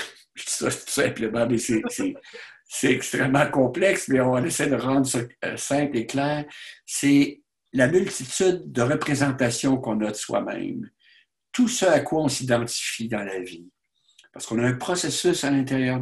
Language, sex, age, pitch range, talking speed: French, male, 60-79, 120-145 Hz, 140 wpm